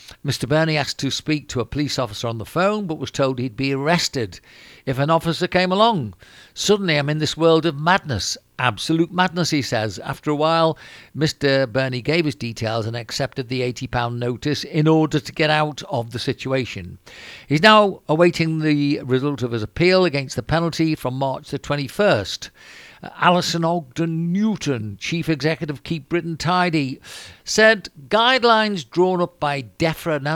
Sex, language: male, English